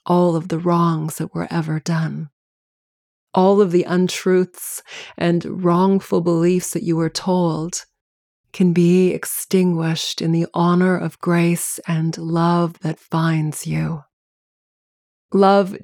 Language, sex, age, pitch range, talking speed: English, female, 30-49, 165-180 Hz, 125 wpm